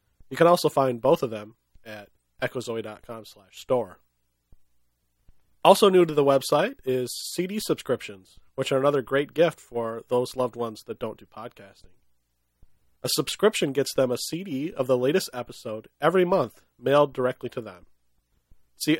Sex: male